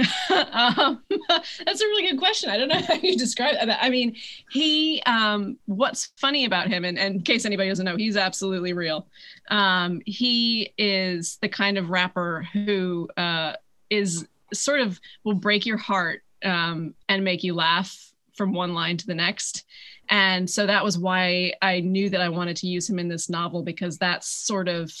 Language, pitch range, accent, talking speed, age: English, 175-210 Hz, American, 185 wpm, 20-39